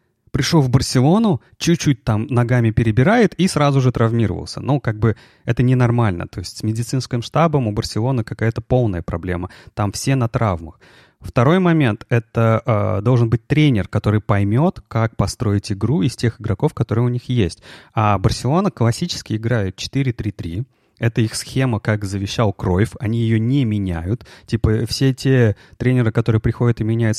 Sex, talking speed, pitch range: male, 160 wpm, 105-130 Hz